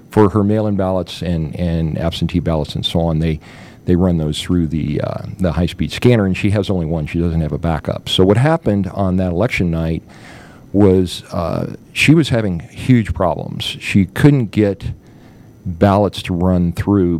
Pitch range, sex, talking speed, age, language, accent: 85-100 Hz, male, 180 wpm, 50-69, English, American